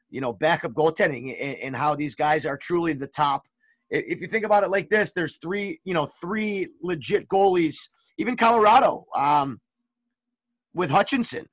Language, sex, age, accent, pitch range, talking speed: English, male, 30-49, American, 160-215 Hz, 165 wpm